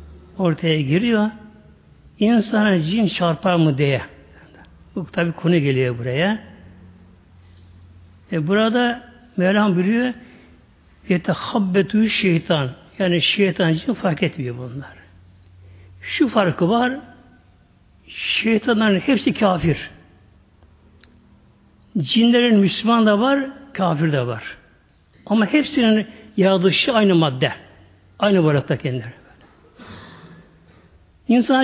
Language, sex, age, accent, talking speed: Turkish, male, 60-79, native, 85 wpm